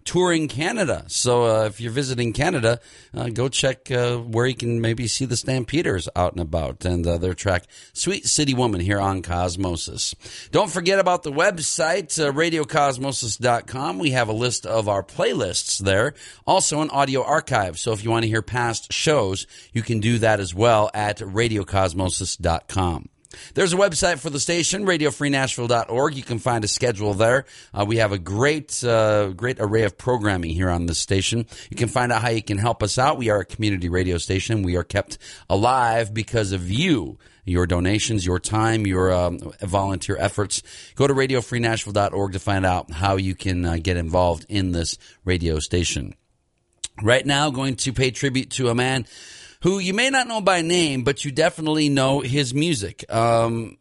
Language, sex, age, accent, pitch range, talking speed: English, male, 40-59, American, 95-135 Hz, 185 wpm